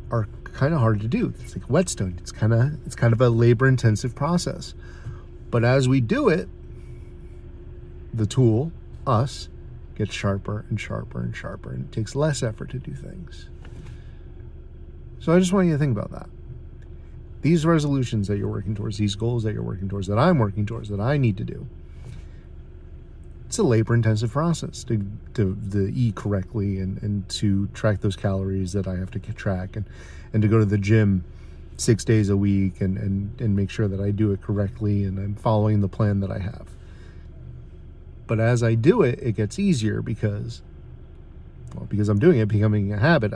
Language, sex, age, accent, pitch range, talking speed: English, male, 40-59, American, 95-115 Hz, 185 wpm